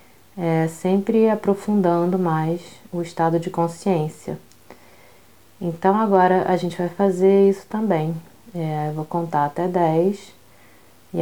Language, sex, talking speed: Portuguese, female, 120 wpm